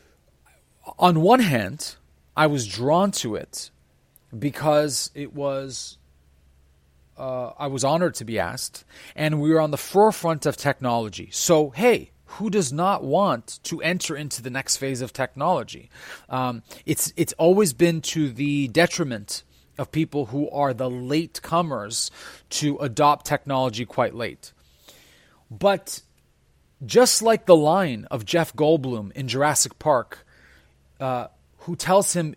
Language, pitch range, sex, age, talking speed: English, 130-175 Hz, male, 30-49, 135 wpm